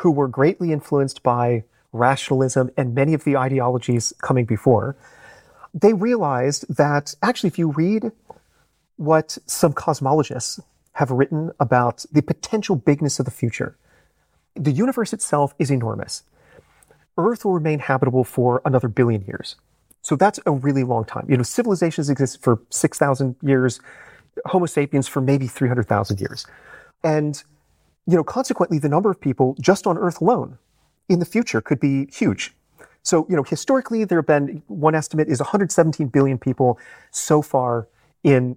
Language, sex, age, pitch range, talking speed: English, male, 30-49, 125-170 Hz, 150 wpm